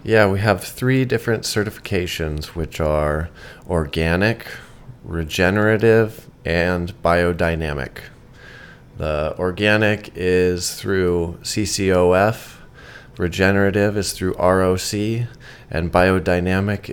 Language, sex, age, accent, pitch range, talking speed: English, male, 20-39, American, 85-100 Hz, 80 wpm